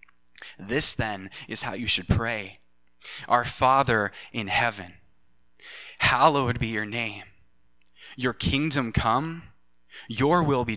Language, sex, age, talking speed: English, male, 20-39, 115 wpm